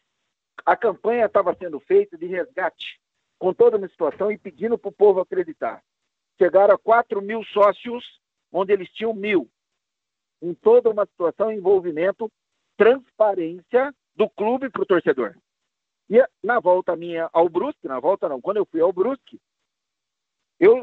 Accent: Brazilian